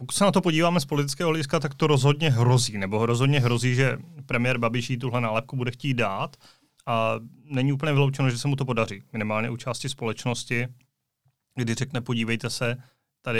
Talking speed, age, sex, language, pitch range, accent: 190 wpm, 30-49, male, Czech, 115-135 Hz, native